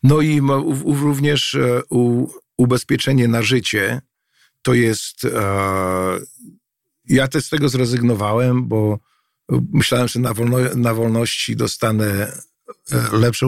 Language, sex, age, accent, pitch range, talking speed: Polish, male, 50-69, native, 115-130 Hz, 100 wpm